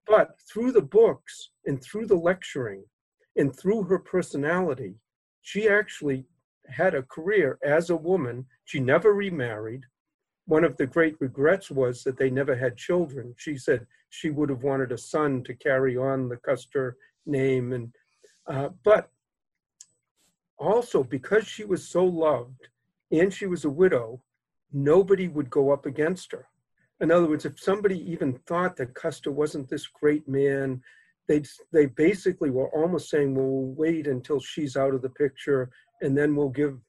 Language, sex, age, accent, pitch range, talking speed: English, male, 50-69, American, 135-185 Hz, 165 wpm